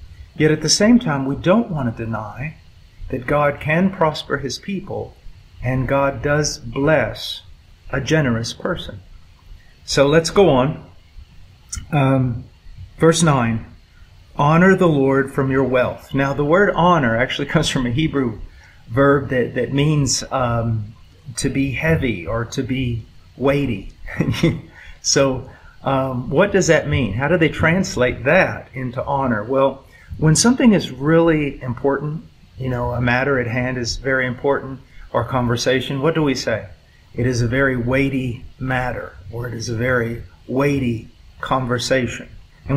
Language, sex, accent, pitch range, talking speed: English, male, American, 115-145 Hz, 145 wpm